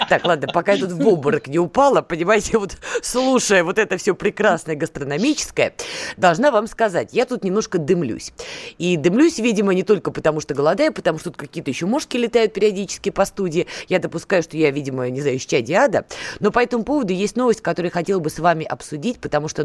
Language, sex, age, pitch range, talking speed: Russian, female, 20-39, 140-210 Hz, 200 wpm